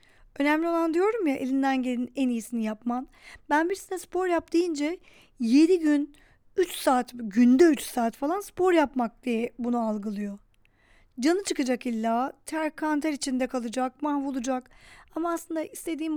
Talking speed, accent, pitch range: 145 wpm, native, 245-320 Hz